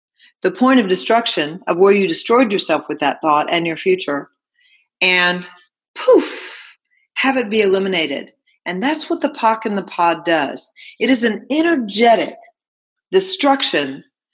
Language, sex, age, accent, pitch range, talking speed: English, female, 40-59, American, 175-270 Hz, 145 wpm